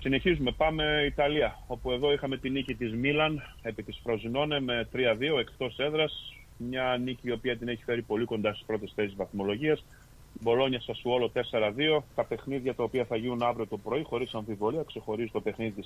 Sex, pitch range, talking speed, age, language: male, 105-130 Hz, 180 wpm, 30-49, Greek